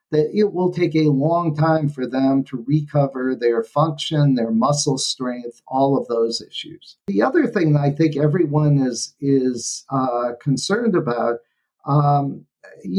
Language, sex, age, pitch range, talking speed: English, male, 50-69, 140-170 Hz, 150 wpm